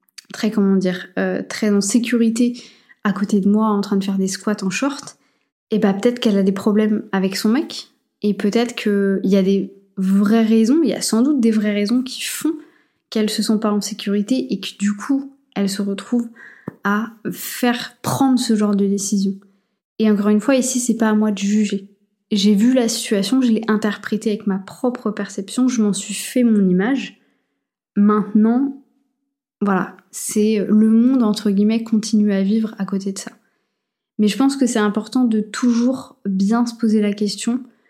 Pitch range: 200-230 Hz